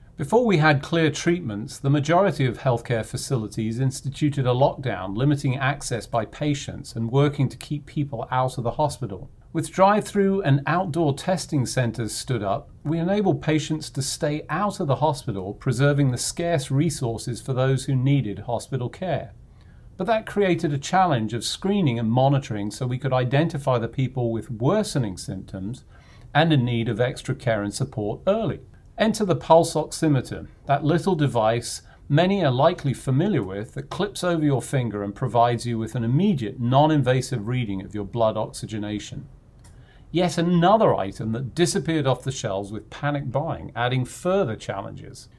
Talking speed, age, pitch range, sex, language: 165 wpm, 40-59, 120-155 Hz, male, English